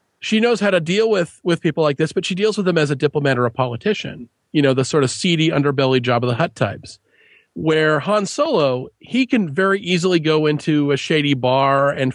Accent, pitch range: American, 140-185 Hz